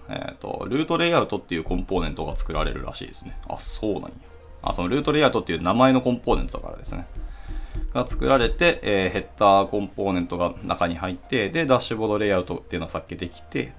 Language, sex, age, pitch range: Japanese, male, 20-39, 80-110 Hz